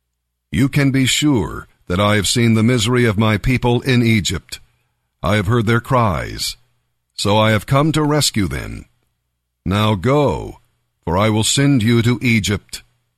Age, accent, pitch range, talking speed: 50-69, American, 105-130 Hz, 165 wpm